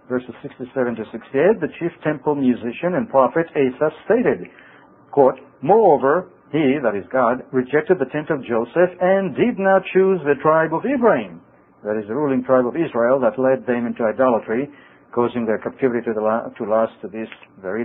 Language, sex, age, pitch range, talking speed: English, male, 60-79, 115-155 Hz, 180 wpm